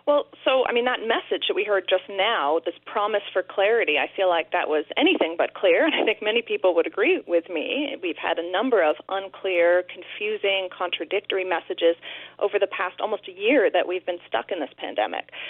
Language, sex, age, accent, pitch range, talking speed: English, female, 30-49, American, 185-240 Hz, 210 wpm